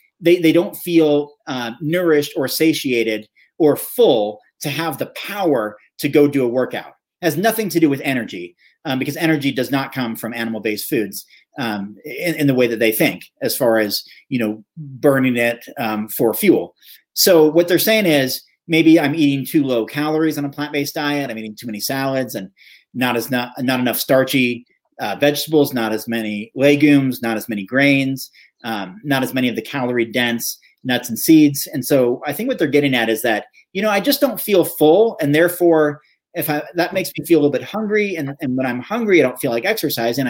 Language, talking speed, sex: English, 210 wpm, male